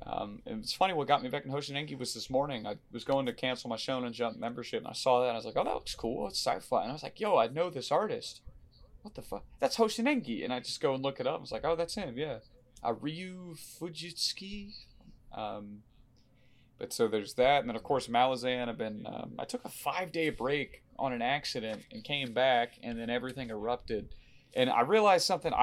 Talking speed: 235 wpm